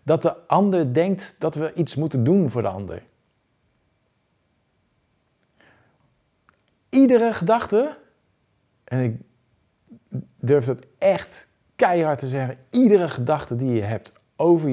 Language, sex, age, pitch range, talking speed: Dutch, male, 50-69, 110-160 Hz, 115 wpm